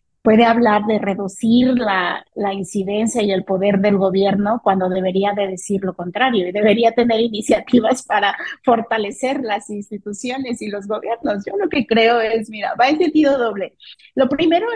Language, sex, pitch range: English, female, 205-260 Hz